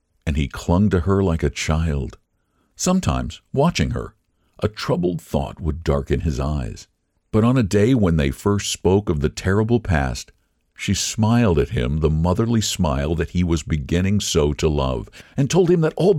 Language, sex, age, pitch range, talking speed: English, male, 60-79, 80-125 Hz, 180 wpm